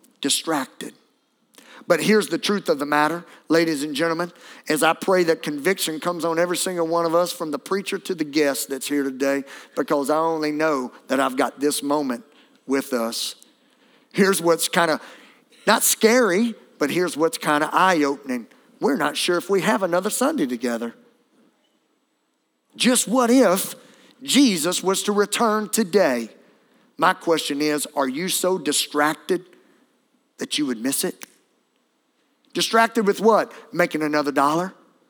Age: 50-69